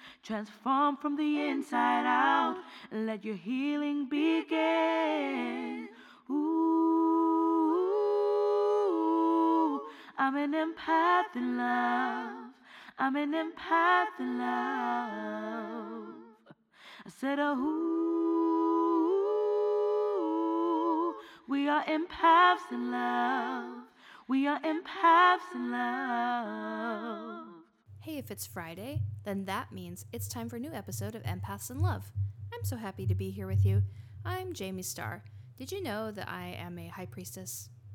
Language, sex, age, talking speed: English, female, 20-39, 115 wpm